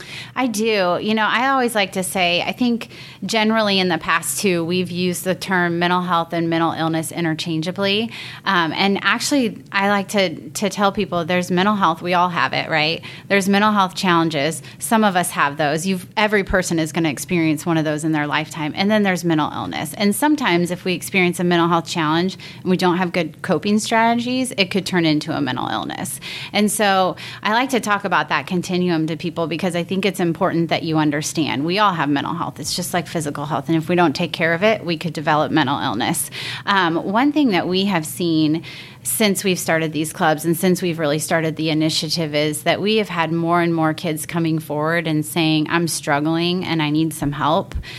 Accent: American